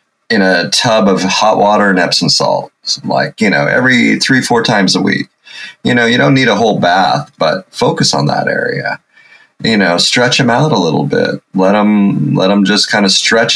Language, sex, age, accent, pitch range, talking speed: English, male, 30-49, American, 90-105 Hz, 210 wpm